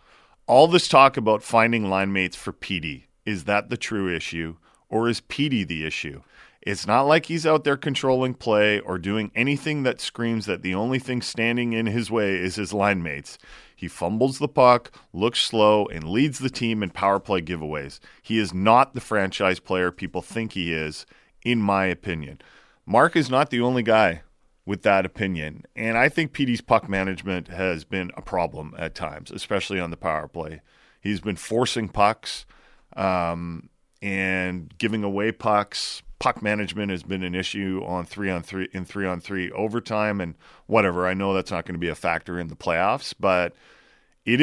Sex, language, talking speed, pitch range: male, English, 185 wpm, 90-115 Hz